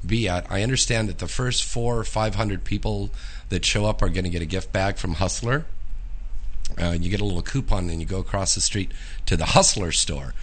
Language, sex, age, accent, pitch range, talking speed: English, male, 50-69, American, 90-125 Hz, 230 wpm